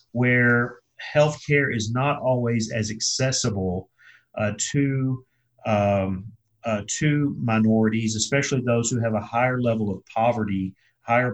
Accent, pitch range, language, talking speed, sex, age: American, 110-125 Hz, English, 120 wpm, male, 40-59